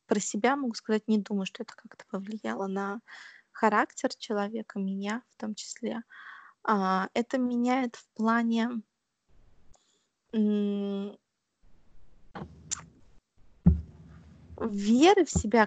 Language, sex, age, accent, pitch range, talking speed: Russian, female, 20-39, native, 200-235 Hz, 100 wpm